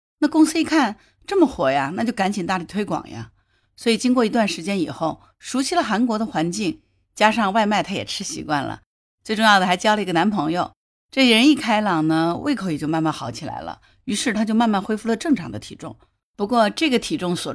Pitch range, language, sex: 165-235 Hz, Chinese, female